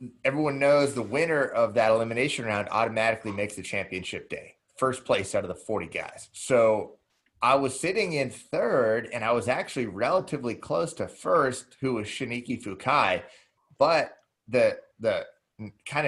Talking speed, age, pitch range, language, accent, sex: 155 wpm, 30-49, 110-135 Hz, English, American, male